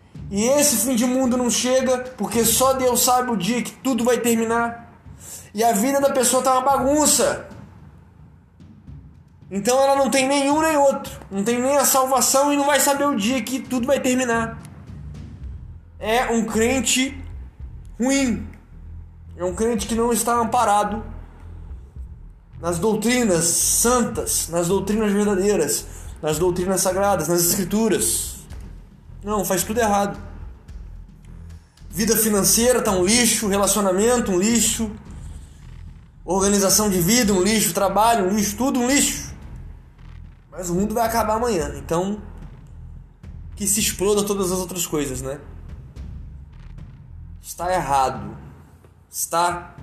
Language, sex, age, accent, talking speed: Portuguese, male, 20-39, Brazilian, 130 wpm